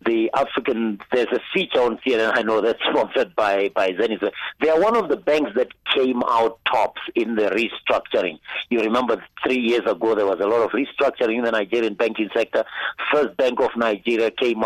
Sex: male